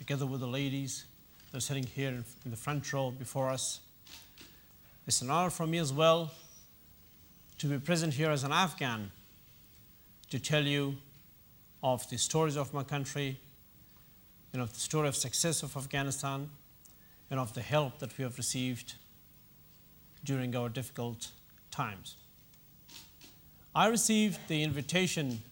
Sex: male